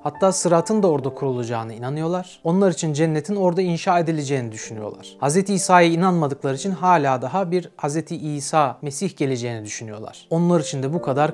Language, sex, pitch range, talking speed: Turkish, male, 140-185 Hz, 160 wpm